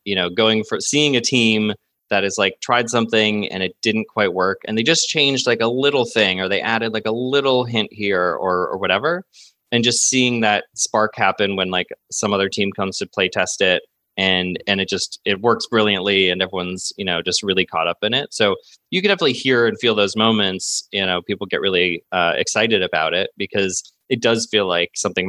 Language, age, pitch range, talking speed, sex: English, 20-39, 95-120 Hz, 220 wpm, male